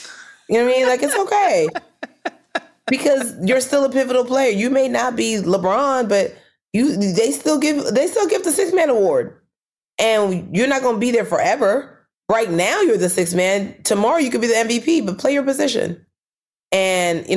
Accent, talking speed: American, 195 wpm